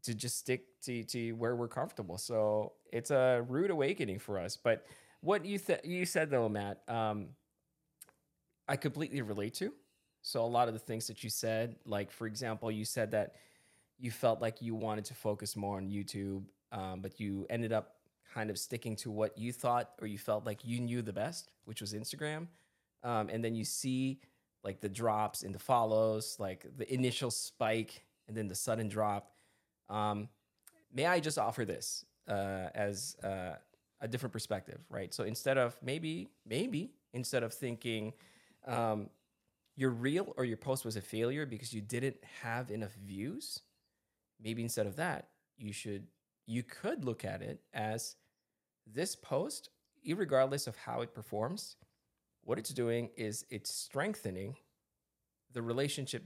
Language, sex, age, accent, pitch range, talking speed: English, male, 20-39, American, 105-125 Hz, 170 wpm